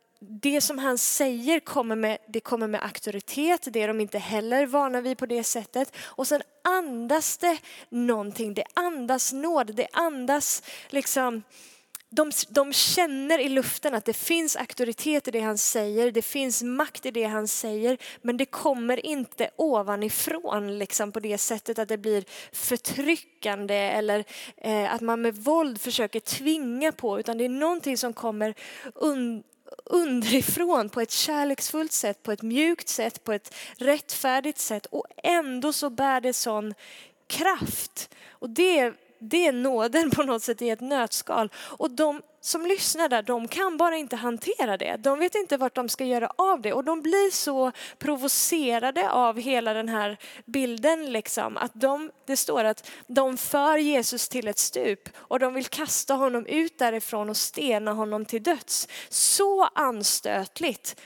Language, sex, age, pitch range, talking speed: Swedish, female, 20-39, 225-295 Hz, 165 wpm